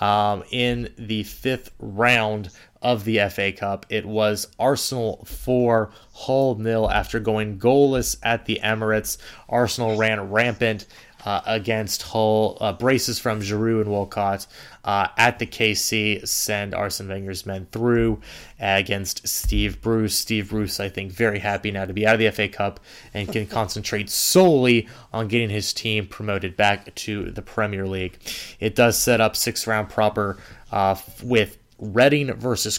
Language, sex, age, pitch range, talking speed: English, male, 20-39, 105-120 Hz, 155 wpm